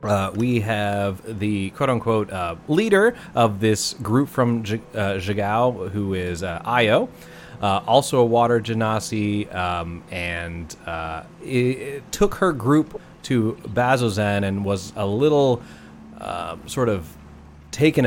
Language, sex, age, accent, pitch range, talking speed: English, male, 30-49, American, 95-140 Hz, 120 wpm